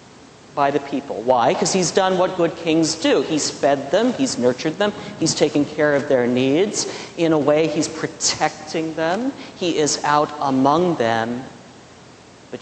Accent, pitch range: American, 140-175 Hz